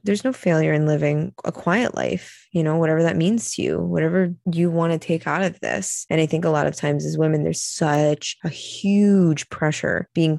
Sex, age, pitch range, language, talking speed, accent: female, 20-39, 155-180 Hz, English, 220 wpm, American